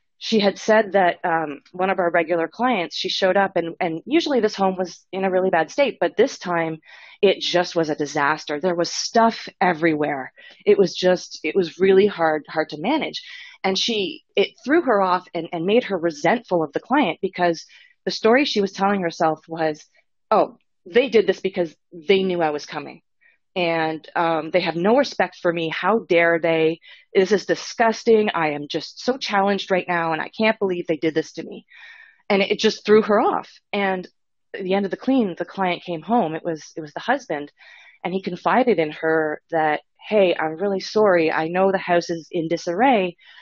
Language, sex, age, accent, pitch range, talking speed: English, female, 30-49, American, 165-210 Hz, 205 wpm